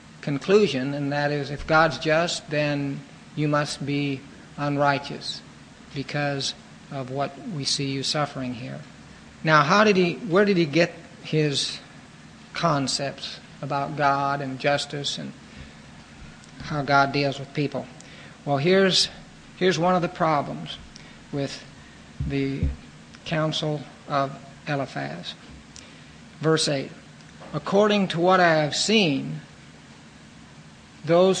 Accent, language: American, English